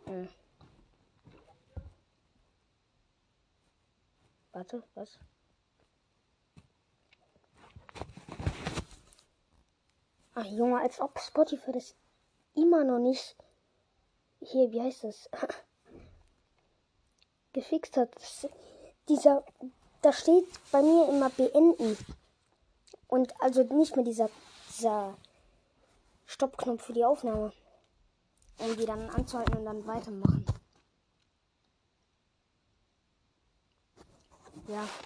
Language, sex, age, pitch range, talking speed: German, female, 20-39, 200-255 Hz, 75 wpm